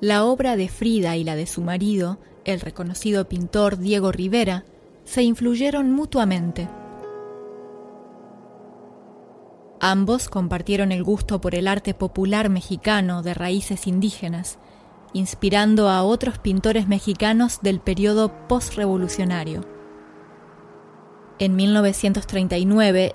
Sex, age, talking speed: female, 20-39, 100 wpm